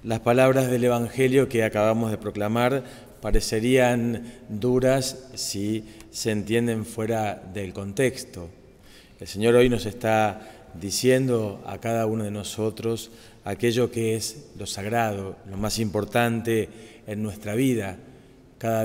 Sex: male